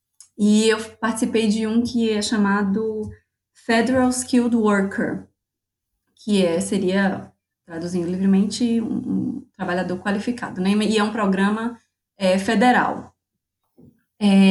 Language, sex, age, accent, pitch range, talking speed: Portuguese, female, 20-39, Brazilian, 190-235 Hz, 115 wpm